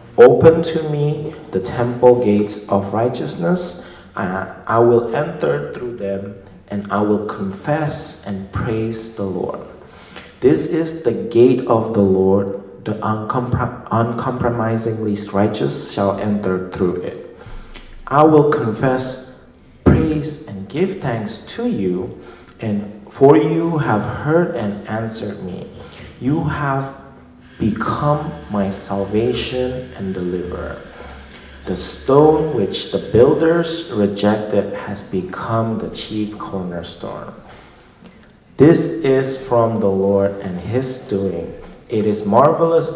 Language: English